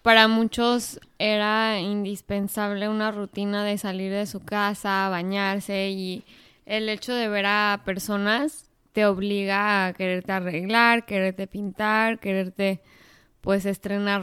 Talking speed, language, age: 120 wpm, Spanish, 10-29